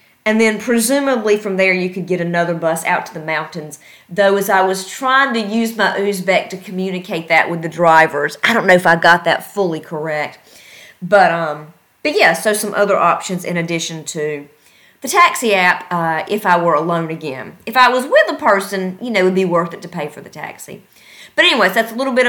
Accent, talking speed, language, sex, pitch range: American, 220 wpm, English, female, 170-225 Hz